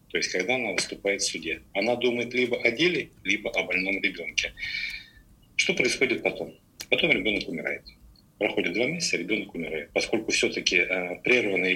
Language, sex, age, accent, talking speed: Russian, male, 50-69, native, 155 wpm